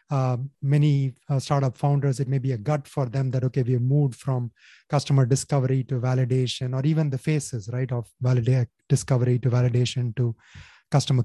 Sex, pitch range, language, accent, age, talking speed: male, 125-140 Hz, English, Indian, 30-49, 175 wpm